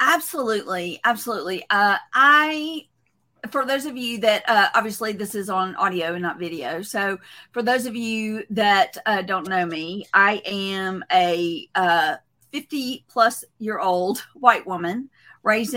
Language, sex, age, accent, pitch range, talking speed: English, female, 40-59, American, 195-245 Hz, 150 wpm